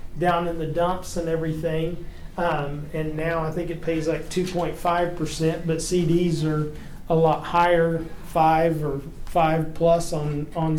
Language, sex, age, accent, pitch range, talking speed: English, male, 40-59, American, 155-175 Hz, 155 wpm